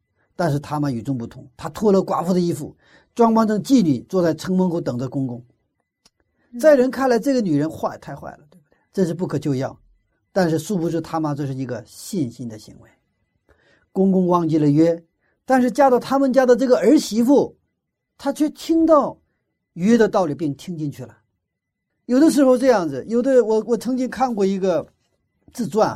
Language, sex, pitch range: Chinese, male, 130-200 Hz